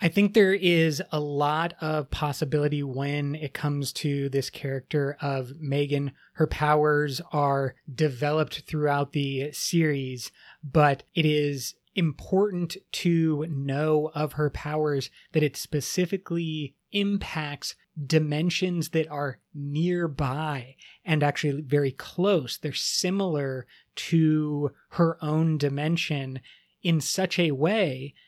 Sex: male